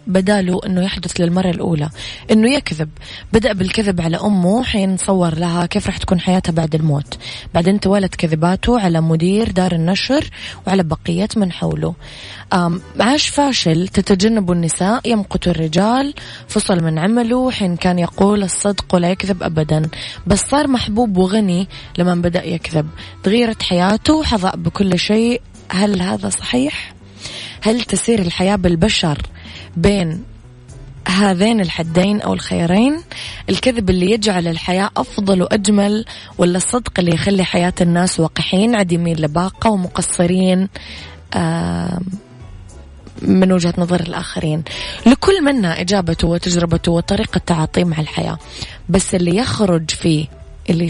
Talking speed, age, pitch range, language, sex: 125 wpm, 20-39, 165-205 Hz, Arabic, female